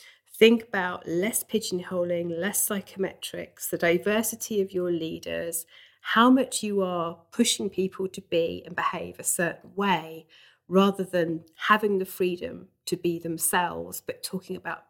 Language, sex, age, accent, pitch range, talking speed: English, female, 40-59, British, 175-225 Hz, 140 wpm